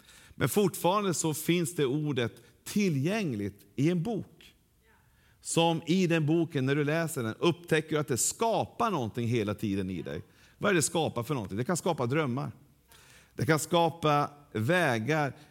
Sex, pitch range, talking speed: male, 130-160 Hz, 165 wpm